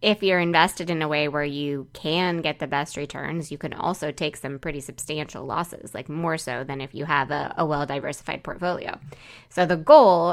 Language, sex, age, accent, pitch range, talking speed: English, female, 20-39, American, 150-185 Hz, 205 wpm